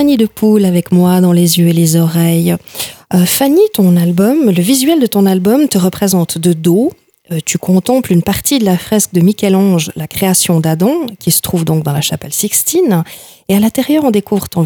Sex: female